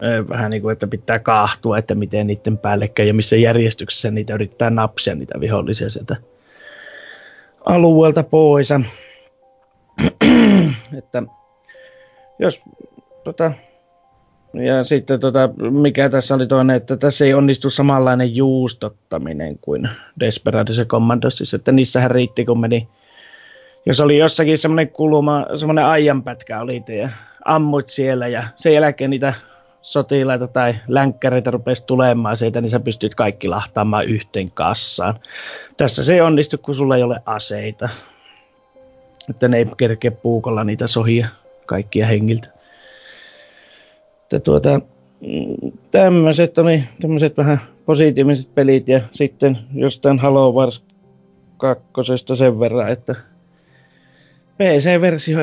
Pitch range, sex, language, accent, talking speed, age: 115-150 Hz, male, Finnish, native, 115 wpm, 30-49